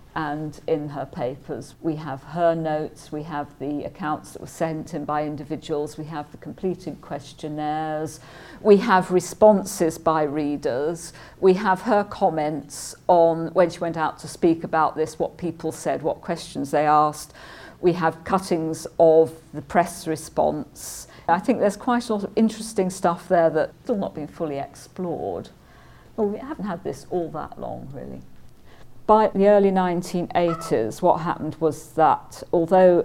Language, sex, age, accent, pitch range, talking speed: English, female, 50-69, British, 150-180 Hz, 160 wpm